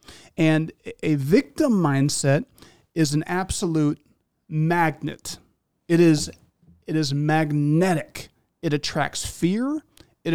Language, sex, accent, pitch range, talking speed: English, male, American, 145-185 Hz, 100 wpm